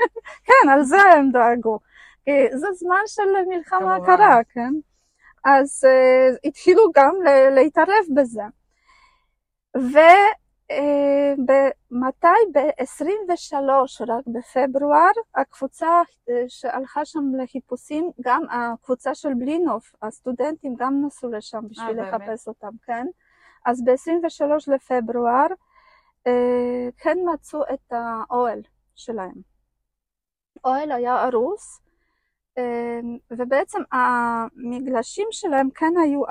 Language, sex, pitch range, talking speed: Hebrew, female, 250-335 Hz, 85 wpm